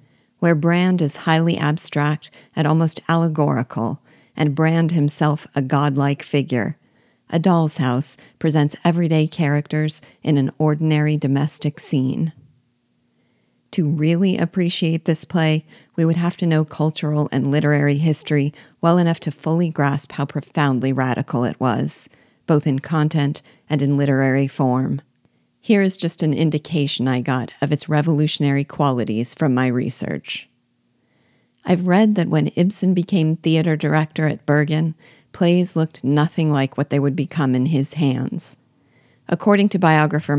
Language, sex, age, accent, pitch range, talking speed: English, female, 50-69, American, 140-165 Hz, 140 wpm